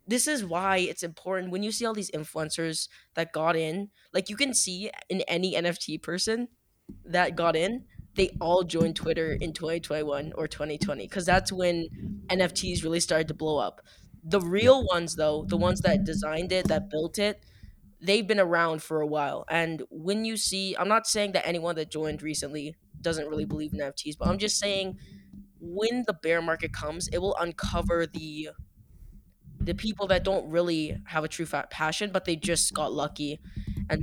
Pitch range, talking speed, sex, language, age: 155-190 Hz, 185 wpm, female, English, 10-29